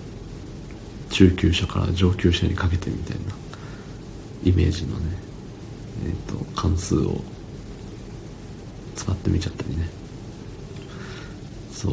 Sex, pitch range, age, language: male, 90-110 Hz, 40-59, Japanese